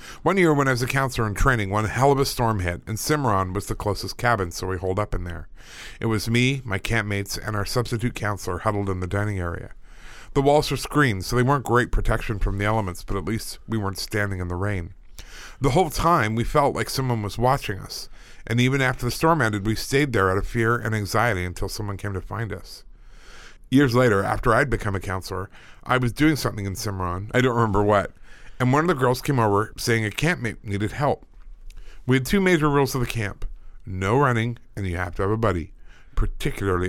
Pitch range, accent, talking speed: 95-125 Hz, American, 225 wpm